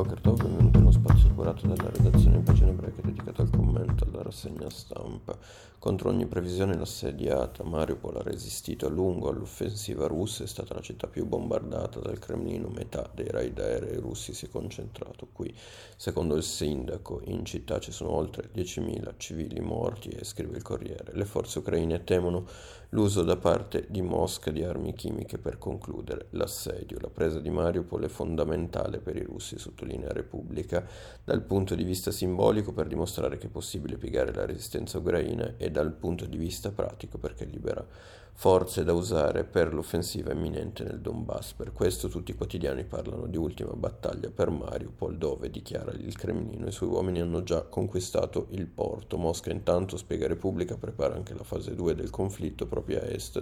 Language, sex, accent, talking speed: Italian, male, native, 175 wpm